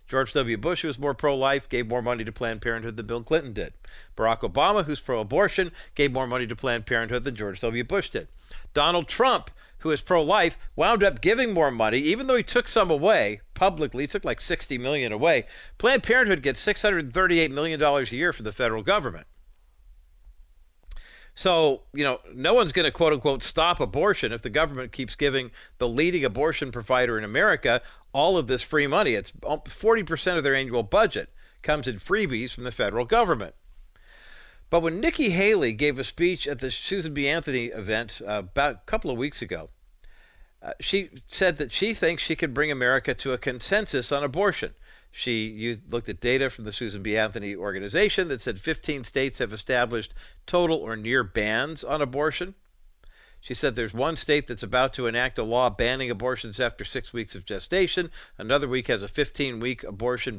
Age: 50-69